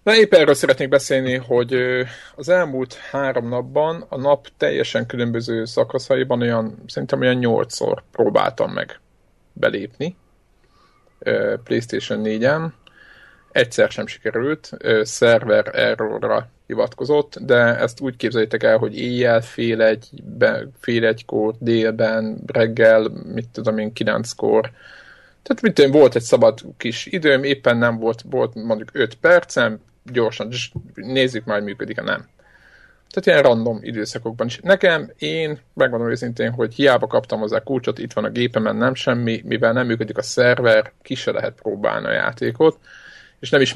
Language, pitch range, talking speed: Hungarian, 115-140 Hz, 140 wpm